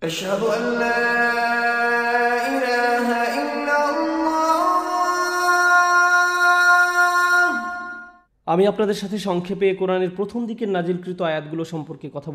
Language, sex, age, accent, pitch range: Bengali, male, 20-39, native, 160-225 Hz